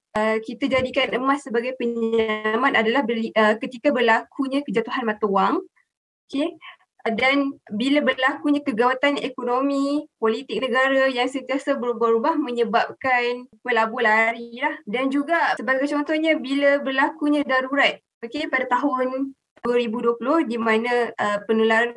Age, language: 20-39, Malay